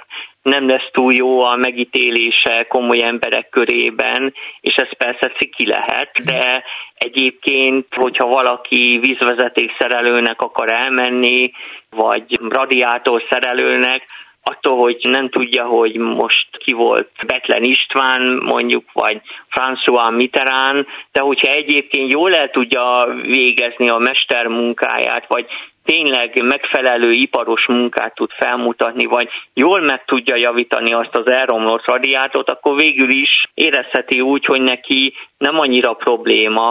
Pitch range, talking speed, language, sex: 120-135 Hz, 125 wpm, Hungarian, male